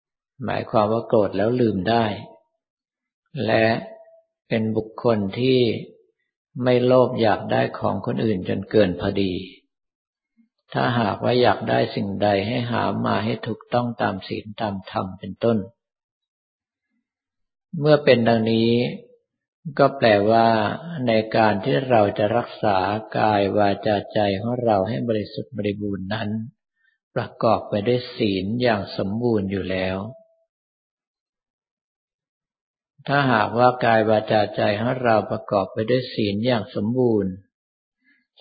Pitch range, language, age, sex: 105-125 Hz, Thai, 50-69, male